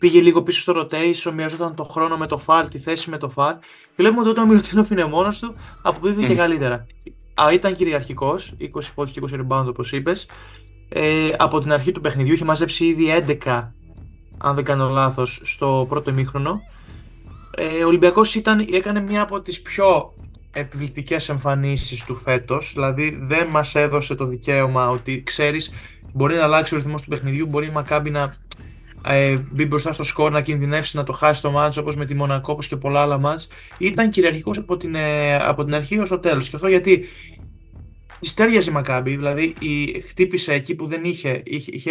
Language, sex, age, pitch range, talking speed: Greek, male, 20-39, 135-170 Hz, 185 wpm